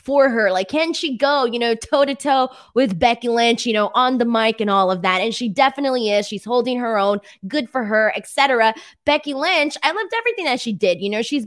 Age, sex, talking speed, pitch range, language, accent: 20-39, female, 240 wpm, 215-285 Hz, English, American